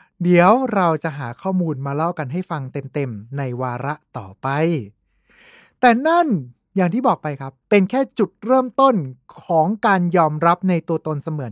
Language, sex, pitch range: Thai, male, 160-230 Hz